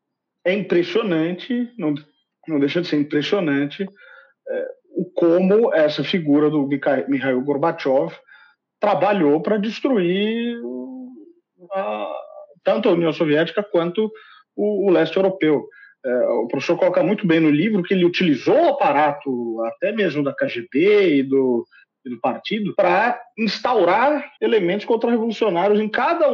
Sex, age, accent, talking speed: male, 40-59, Brazilian, 120 wpm